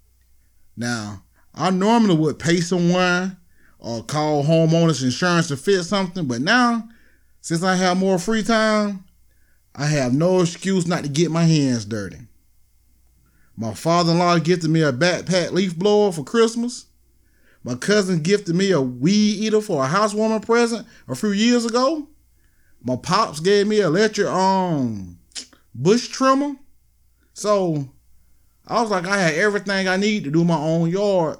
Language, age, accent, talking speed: English, 30-49, American, 150 wpm